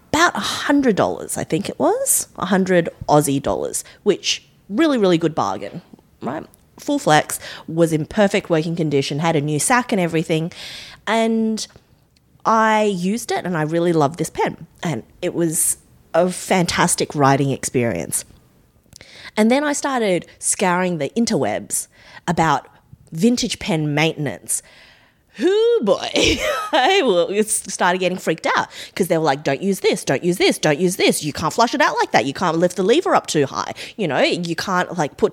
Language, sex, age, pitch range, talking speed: English, female, 20-39, 155-220 Hz, 170 wpm